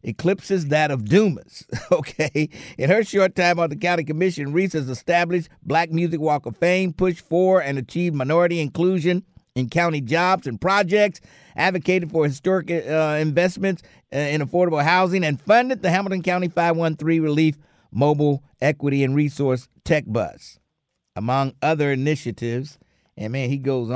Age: 50-69